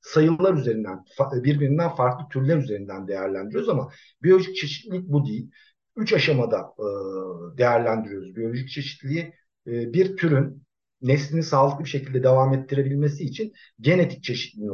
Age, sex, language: 50-69, male, Turkish